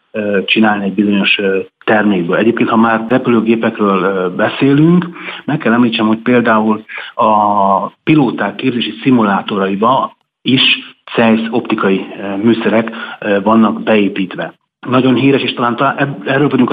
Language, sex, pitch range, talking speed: Hungarian, male, 100-115 Hz, 110 wpm